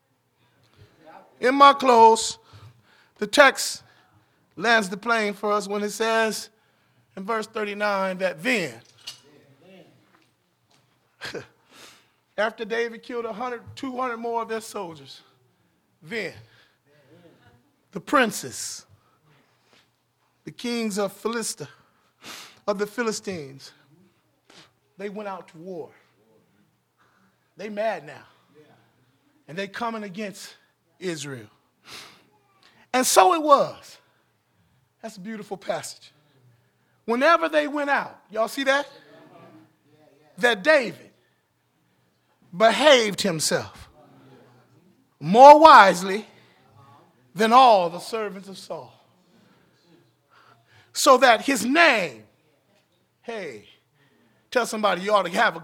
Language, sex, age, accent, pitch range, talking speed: English, male, 30-49, American, 160-235 Hz, 95 wpm